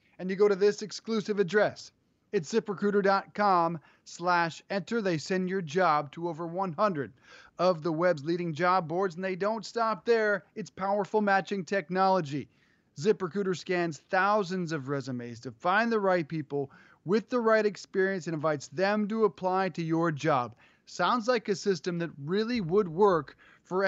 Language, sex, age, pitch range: English, male, 30-49, 165-210 Hz